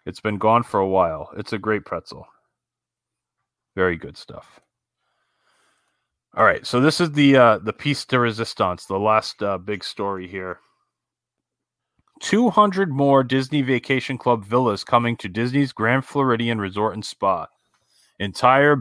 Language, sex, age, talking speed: English, male, 30-49, 145 wpm